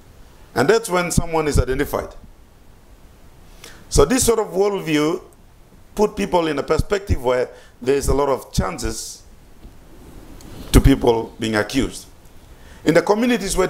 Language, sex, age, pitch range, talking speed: English, male, 50-69, 110-165 Hz, 130 wpm